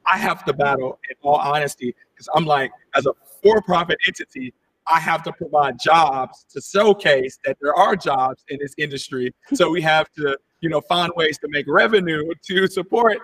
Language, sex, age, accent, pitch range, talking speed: English, male, 40-59, American, 150-200 Hz, 185 wpm